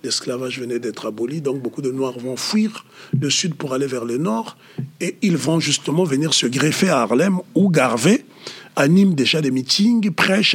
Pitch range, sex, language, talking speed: 135-180 Hz, male, French, 190 wpm